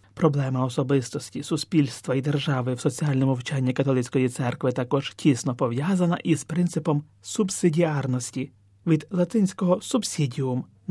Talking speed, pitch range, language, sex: 110 wpm, 135-185 Hz, Ukrainian, male